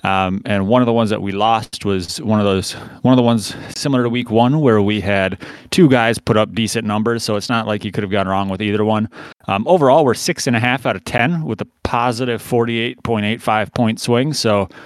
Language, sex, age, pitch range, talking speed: English, male, 30-49, 105-120 Hz, 240 wpm